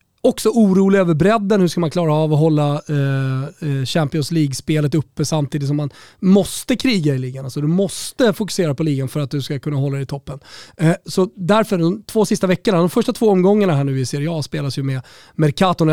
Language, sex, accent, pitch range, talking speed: Swedish, male, native, 145-215 Hz, 215 wpm